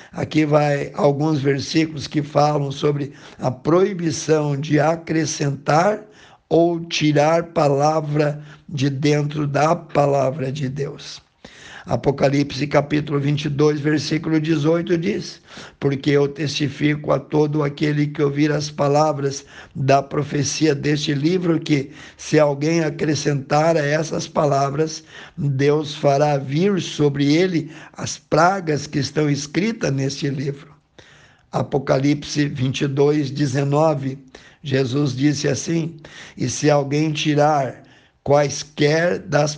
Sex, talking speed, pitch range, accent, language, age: male, 110 wpm, 145-165 Hz, Brazilian, Portuguese, 60-79